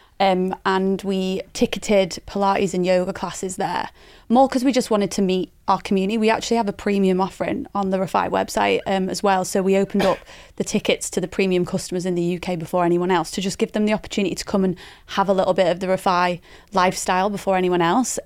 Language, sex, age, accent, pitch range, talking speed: English, female, 20-39, British, 185-210 Hz, 220 wpm